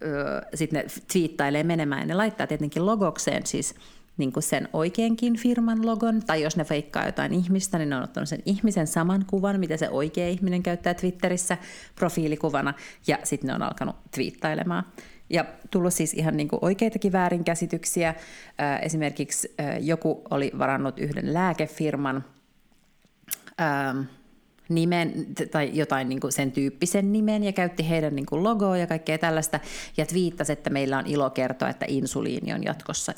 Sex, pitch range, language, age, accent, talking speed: female, 150-180 Hz, Finnish, 30-49, native, 150 wpm